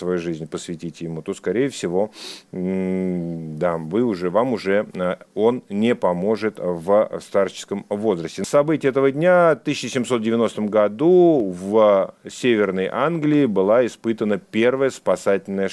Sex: male